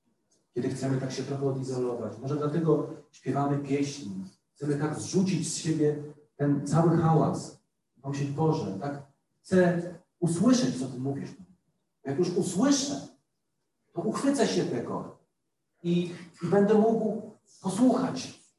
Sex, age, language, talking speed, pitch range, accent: male, 40-59, Polish, 125 wpm, 150-205 Hz, native